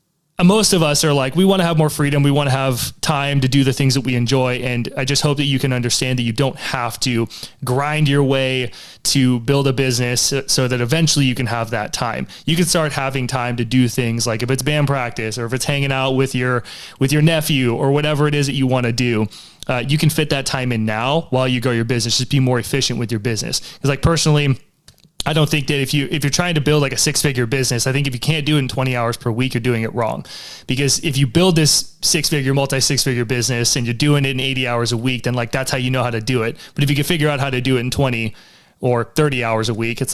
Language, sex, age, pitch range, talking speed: English, male, 20-39, 125-150 Hz, 280 wpm